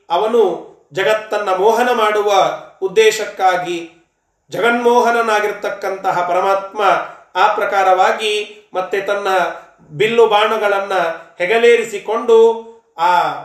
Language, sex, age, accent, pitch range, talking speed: Kannada, male, 30-49, native, 185-235 Hz, 60 wpm